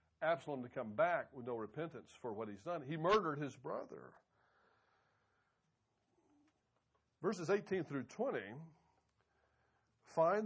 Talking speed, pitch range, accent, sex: 115 wpm, 120-160 Hz, American, male